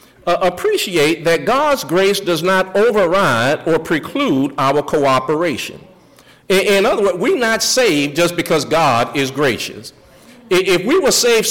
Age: 50-69